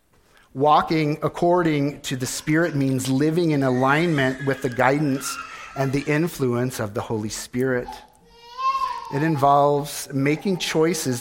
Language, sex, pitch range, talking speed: English, male, 135-170 Hz, 125 wpm